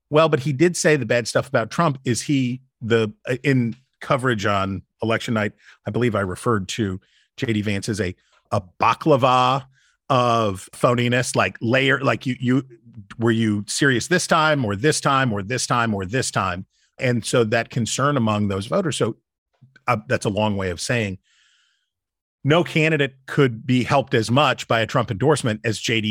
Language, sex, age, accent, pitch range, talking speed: English, male, 40-59, American, 110-130 Hz, 175 wpm